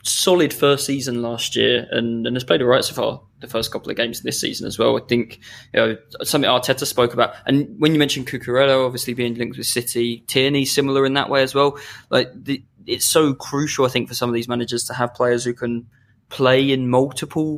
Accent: British